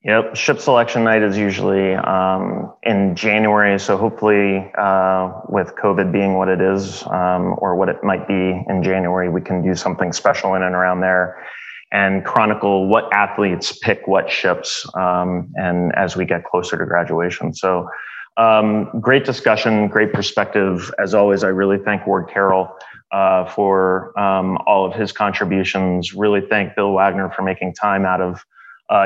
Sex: male